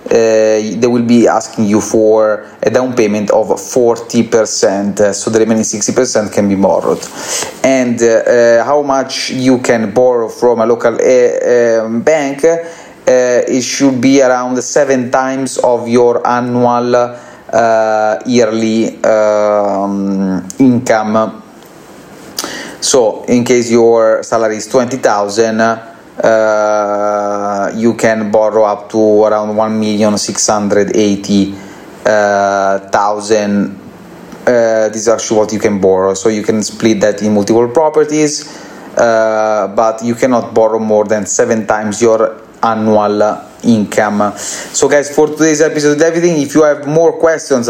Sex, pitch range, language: male, 110-125 Hz, English